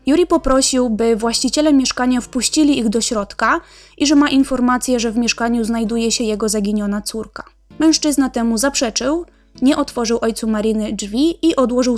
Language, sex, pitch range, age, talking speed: Polish, female, 225-265 Hz, 20-39, 155 wpm